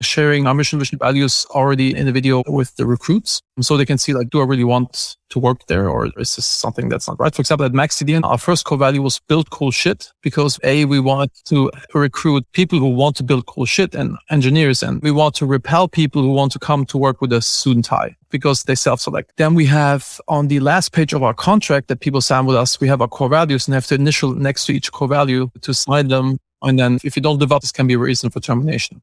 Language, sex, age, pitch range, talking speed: English, male, 30-49, 130-150 Hz, 250 wpm